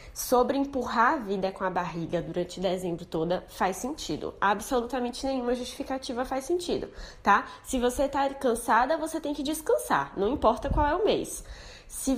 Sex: female